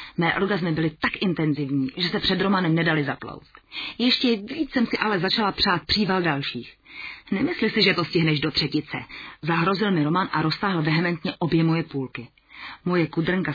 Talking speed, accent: 170 wpm, native